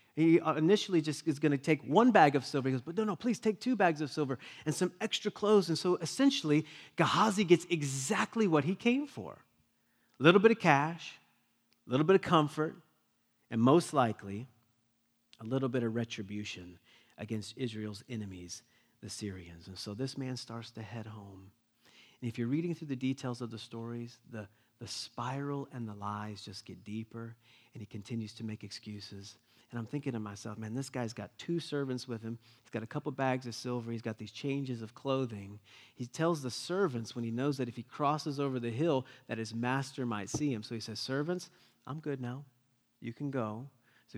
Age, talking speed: 40-59, 200 wpm